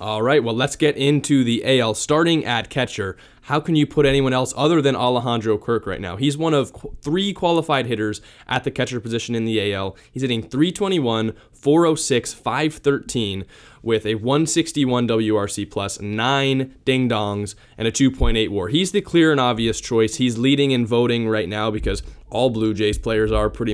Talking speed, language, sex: 180 wpm, English, male